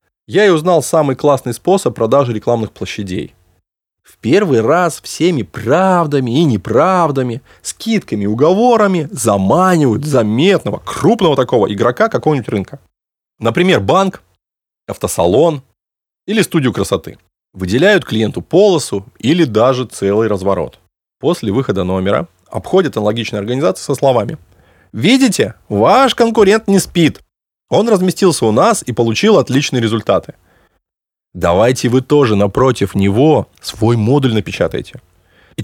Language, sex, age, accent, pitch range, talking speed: Russian, male, 20-39, native, 105-175 Hz, 115 wpm